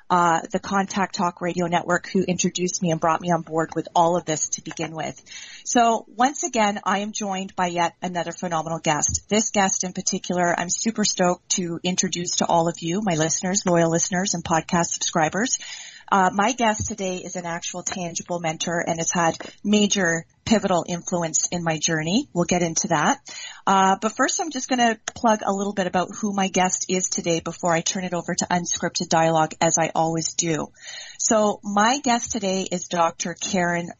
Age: 30-49